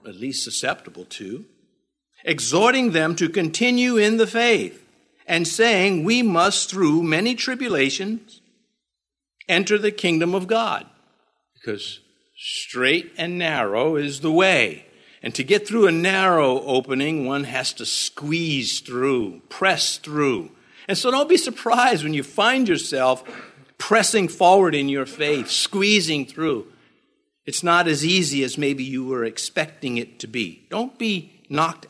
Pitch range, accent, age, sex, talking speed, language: 130-200 Hz, American, 50-69, male, 140 wpm, English